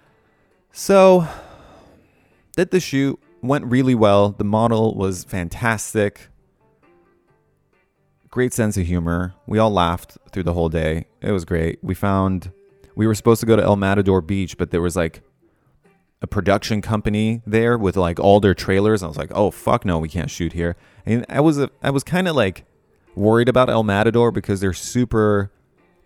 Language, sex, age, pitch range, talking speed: English, male, 20-39, 90-115 Hz, 170 wpm